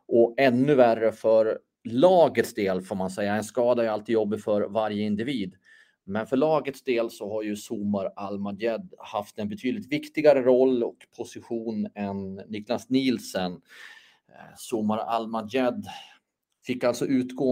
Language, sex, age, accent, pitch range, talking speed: Swedish, male, 30-49, native, 110-135 Hz, 140 wpm